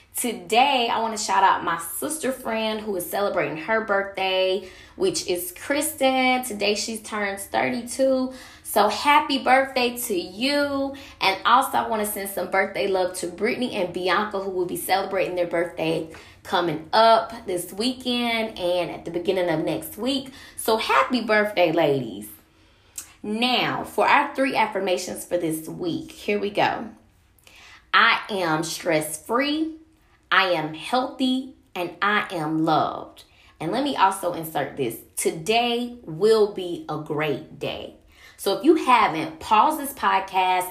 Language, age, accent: English, 10-29, American